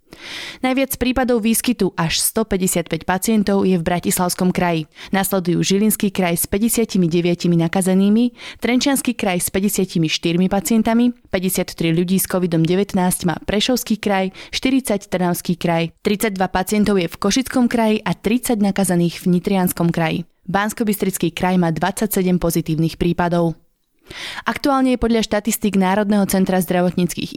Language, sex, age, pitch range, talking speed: Slovak, female, 20-39, 175-215 Hz, 125 wpm